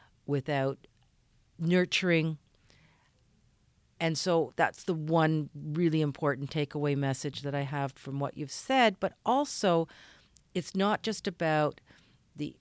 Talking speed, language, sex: 120 wpm, English, female